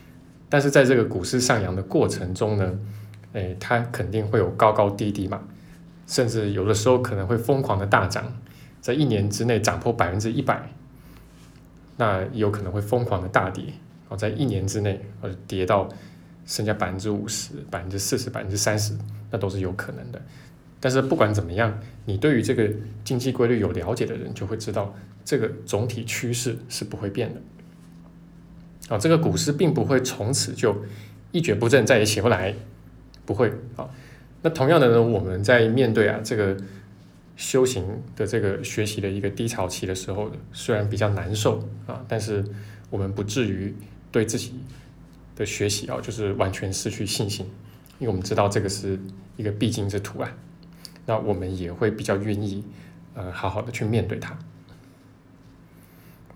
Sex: male